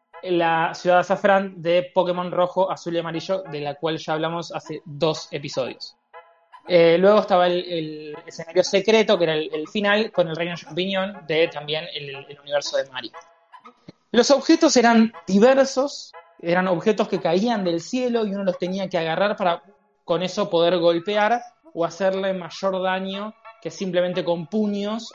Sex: male